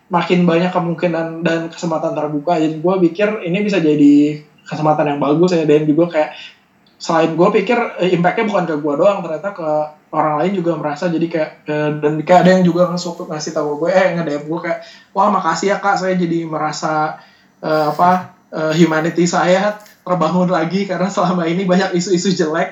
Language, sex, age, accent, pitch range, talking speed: Indonesian, male, 20-39, native, 150-180 Hz, 175 wpm